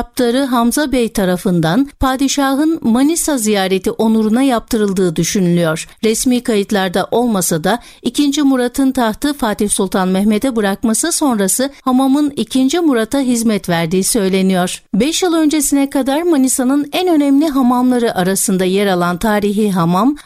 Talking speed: 120 wpm